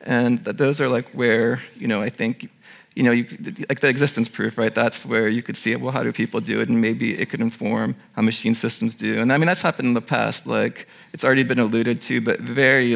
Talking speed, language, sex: 240 wpm, English, male